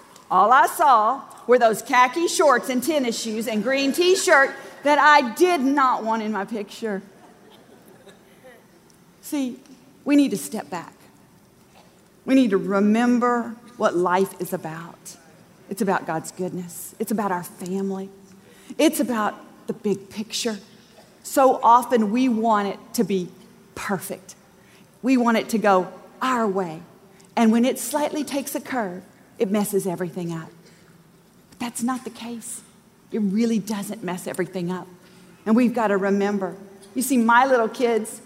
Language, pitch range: English, 190-245 Hz